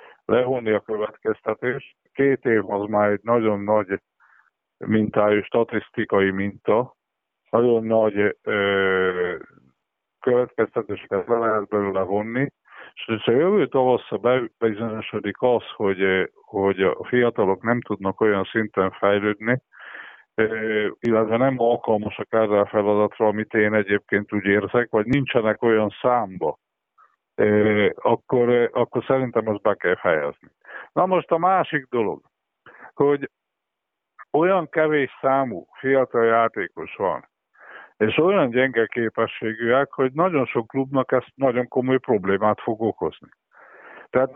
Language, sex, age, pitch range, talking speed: Hungarian, male, 50-69, 105-125 Hz, 110 wpm